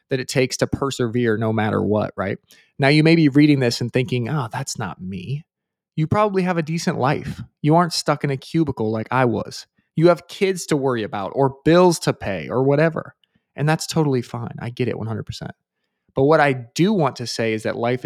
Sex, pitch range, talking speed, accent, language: male, 125-155 Hz, 220 wpm, American, English